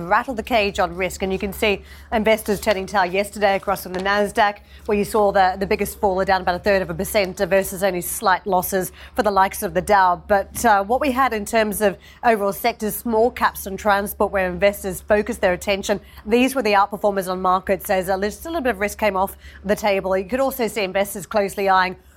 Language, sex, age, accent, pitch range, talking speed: English, female, 30-49, Australian, 190-215 Hz, 230 wpm